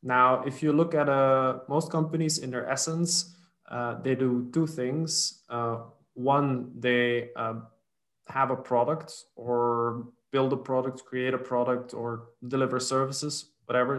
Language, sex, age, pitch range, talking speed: English, male, 20-39, 120-140 Hz, 145 wpm